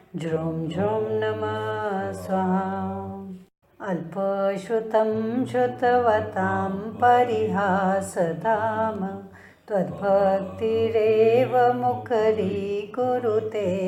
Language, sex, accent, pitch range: Hindi, female, native, 190-240 Hz